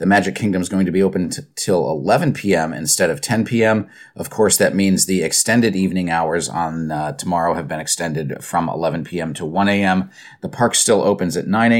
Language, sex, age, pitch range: English, male, 40-59, 90-110 Hz